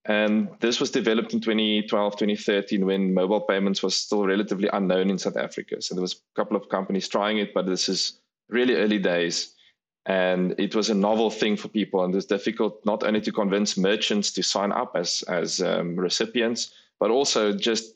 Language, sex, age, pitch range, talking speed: English, male, 20-39, 95-110 Hz, 195 wpm